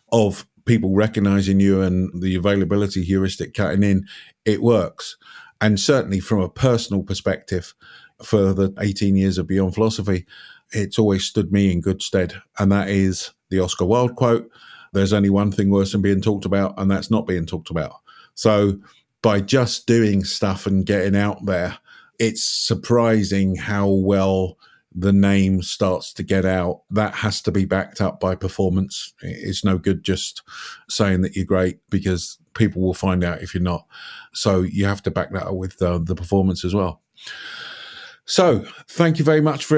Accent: British